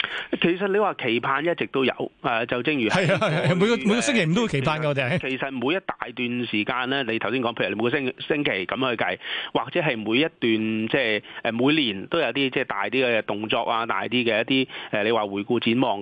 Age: 30-49